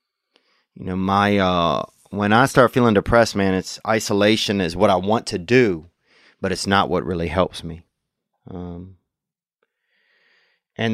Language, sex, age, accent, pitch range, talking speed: English, male, 30-49, American, 90-115 Hz, 150 wpm